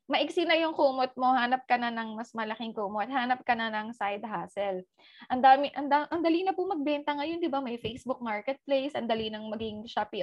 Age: 20-39